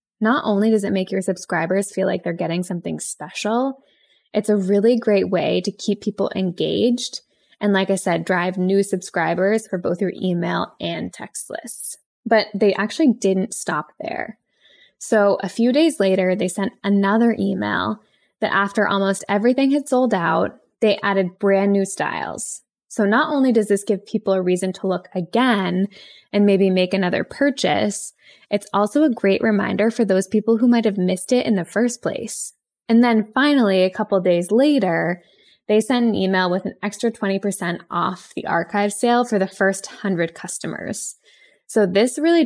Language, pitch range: English, 190-230 Hz